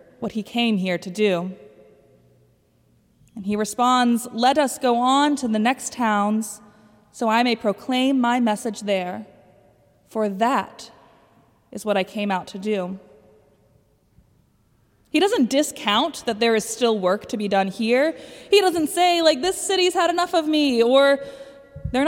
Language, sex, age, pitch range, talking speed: English, female, 20-39, 215-275 Hz, 155 wpm